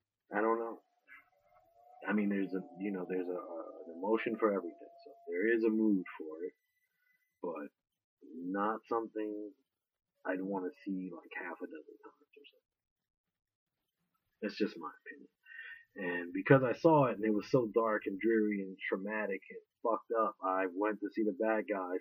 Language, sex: English, male